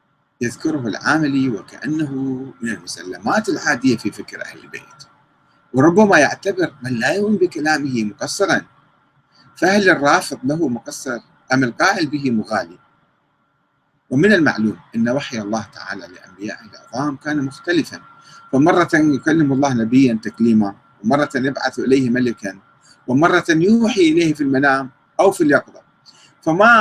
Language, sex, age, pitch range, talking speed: Arabic, male, 40-59, 120-200 Hz, 120 wpm